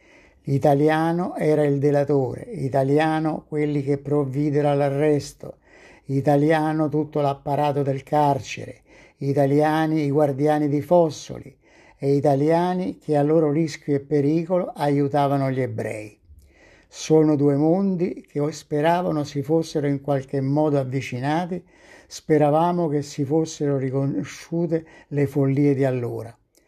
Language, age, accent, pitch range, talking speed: Italian, 60-79, native, 135-155 Hz, 110 wpm